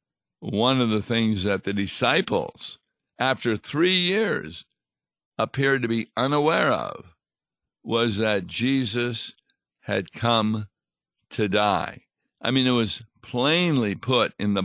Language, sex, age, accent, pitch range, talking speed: English, male, 60-79, American, 100-120 Hz, 125 wpm